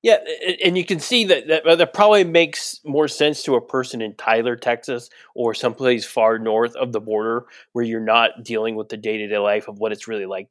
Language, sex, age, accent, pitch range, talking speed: English, male, 20-39, American, 135-215 Hz, 230 wpm